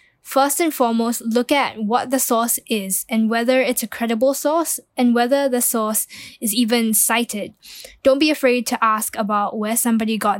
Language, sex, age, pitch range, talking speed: English, female, 10-29, 215-250 Hz, 180 wpm